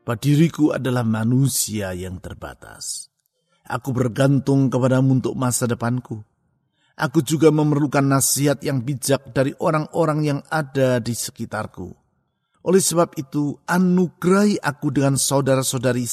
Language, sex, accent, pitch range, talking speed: Indonesian, male, native, 120-145 Hz, 110 wpm